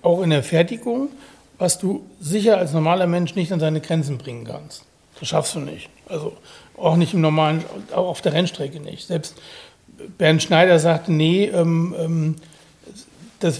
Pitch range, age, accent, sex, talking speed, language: 160-190 Hz, 60-79, German, male, 160 wpm, German